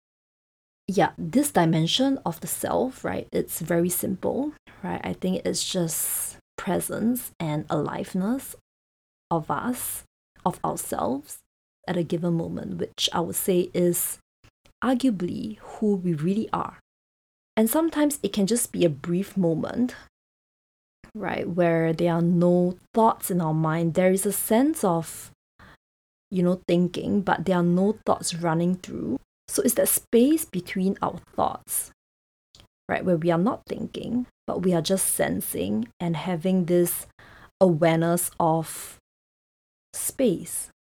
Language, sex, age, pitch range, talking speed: English, female, 20-39, 165-210 Hz, 135 wpm